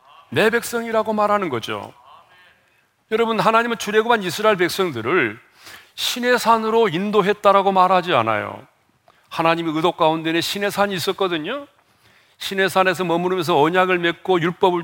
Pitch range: 165-220 Hz